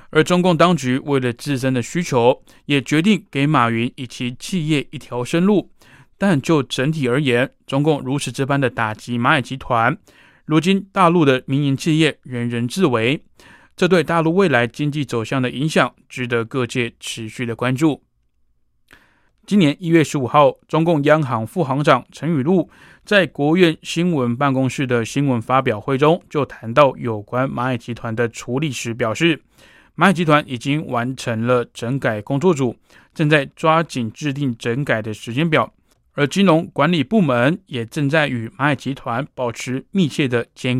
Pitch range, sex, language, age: 125-160 Hz, male, Chinese, 20-39